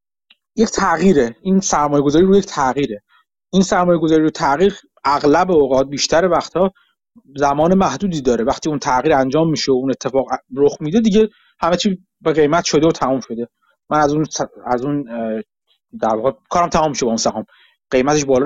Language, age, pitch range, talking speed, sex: Persian, 30-49, 135-175 Hz, 180 wpm, male